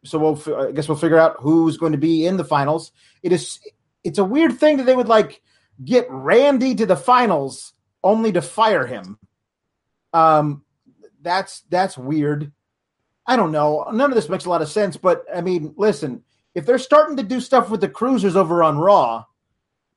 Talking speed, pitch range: 195 wpm, 160-225 Hz